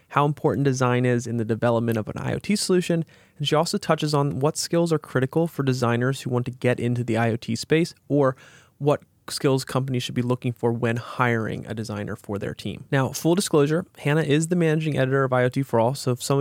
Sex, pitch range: male, 115-140 Hz